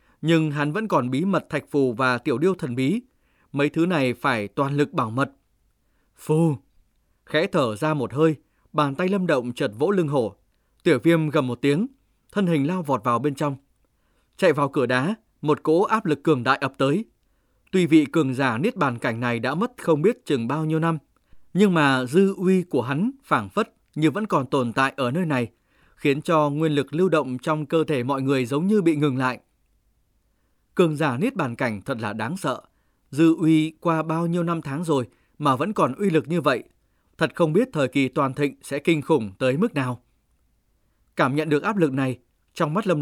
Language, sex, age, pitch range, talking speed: Vietnamese, male, 20-39, 130-165 Hz, 215 wpm